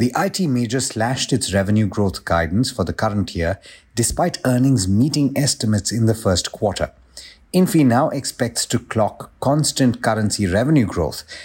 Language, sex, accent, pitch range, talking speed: English, male, Indian, 100-130 Hz, 150 wpm